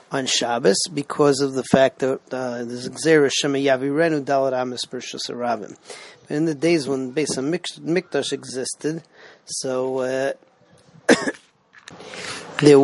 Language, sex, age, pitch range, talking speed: English, male, 40-59, 135-155 Hz, 110 wpm